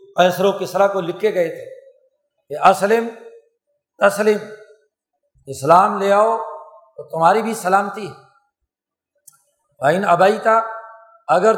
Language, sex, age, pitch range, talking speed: Urdu, male, 50-69, 180-225 Hz, 110 wpm